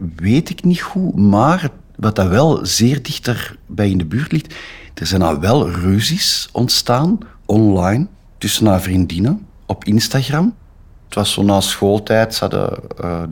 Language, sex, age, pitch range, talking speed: Dutch, male, 50-69, 95-125 Hz, 160 wpm